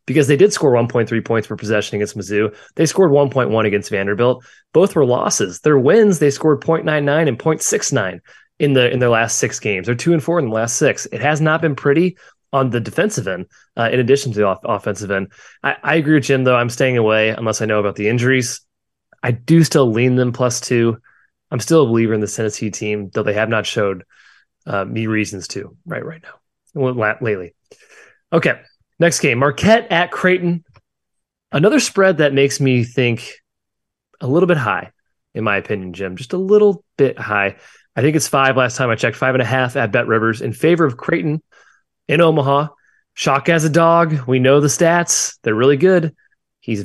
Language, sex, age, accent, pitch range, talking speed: English, male, 20-39, American, 110-155 Hz, 200 wpm